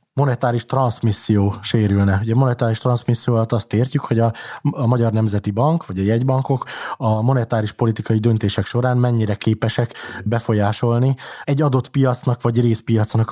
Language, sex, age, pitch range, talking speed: Hungarian, male, 20-39, 110-125 Hz, 130 wpm